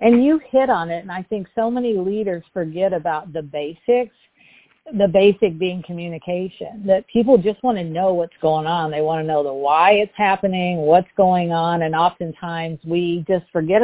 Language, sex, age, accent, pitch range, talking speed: English, female, 50-69, American, 165-210 Hz, 190 wpm